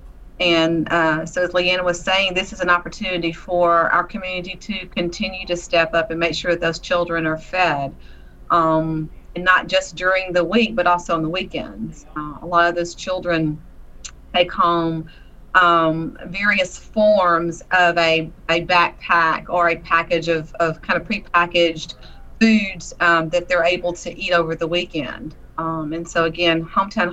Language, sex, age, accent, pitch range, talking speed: English, female, 40-59, American, 165-180 Hz, 170 wpm